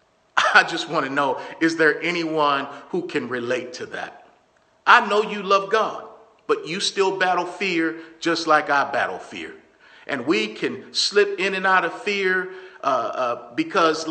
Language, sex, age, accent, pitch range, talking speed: English, male, 50-69, American, 195-260 Hz, 170 wpm